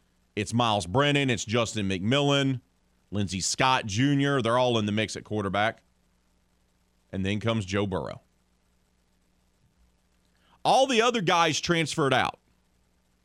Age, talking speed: 40-59, 120 wpm